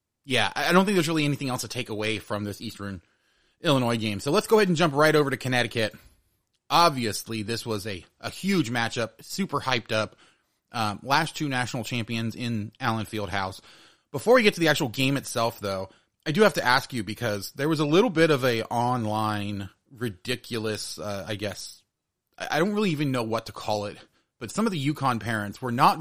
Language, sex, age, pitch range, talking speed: English, male, 30-49, 105-140 Hz, 210 wpm